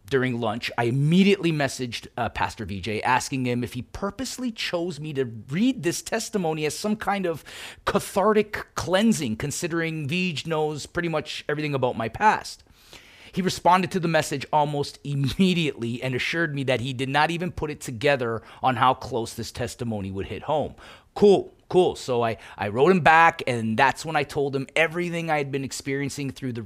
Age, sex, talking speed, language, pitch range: 30-49, male, 180 wpm, English, 115-160 Hz